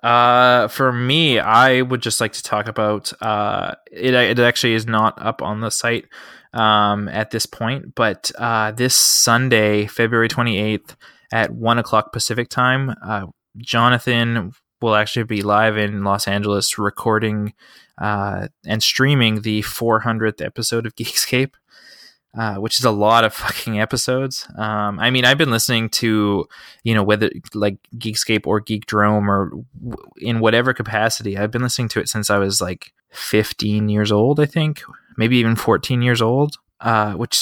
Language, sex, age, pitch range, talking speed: English, male, 20-39, 105-120 Hz, 165 wpm